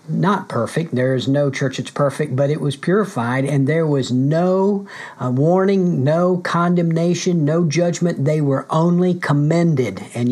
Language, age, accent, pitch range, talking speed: English, 50-69, American, 135-170 Hz, 155 wpm